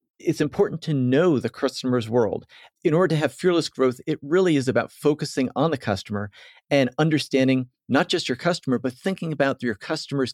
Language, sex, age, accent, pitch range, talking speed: English, male, 40-59, American, 125-160 Hz, 185 wpm